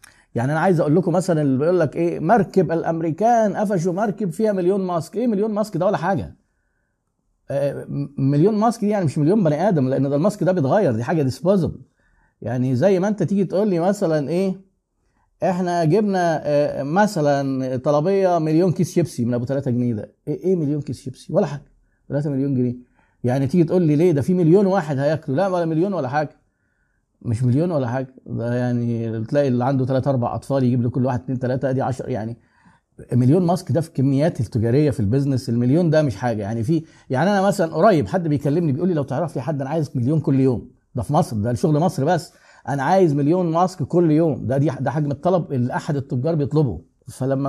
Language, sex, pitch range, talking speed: Arabic, male, 130-180 Hz, 205 wpm